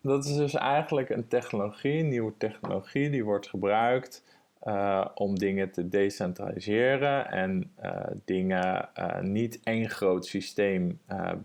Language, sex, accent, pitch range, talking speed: Dutch, male, Dutch, 100-140 Hz, 135 wpm